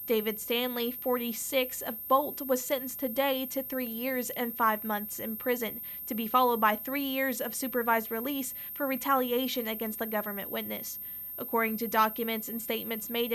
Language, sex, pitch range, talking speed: English, female, 225-255 Hz, 165 wpm